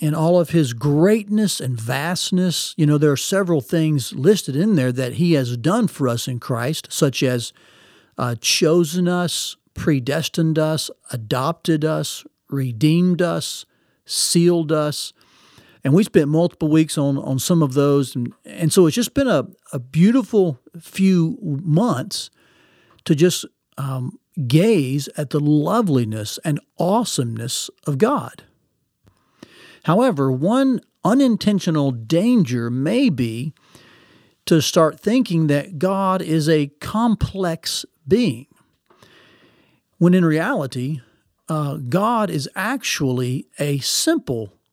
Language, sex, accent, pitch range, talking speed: English, male, American, 140-185 Hz, 125 wpm